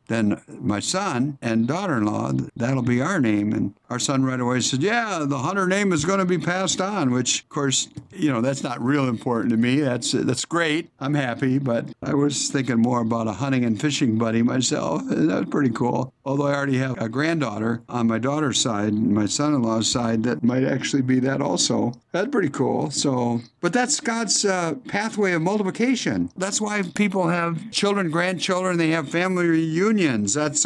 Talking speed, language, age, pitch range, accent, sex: 190 wpm, English, 60-79, 120-165 Hz, American, male